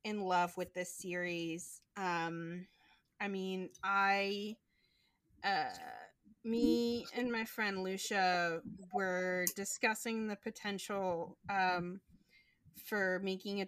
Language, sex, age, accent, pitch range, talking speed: English, female, 20-39, American, 185-225 Hz, 100 wpm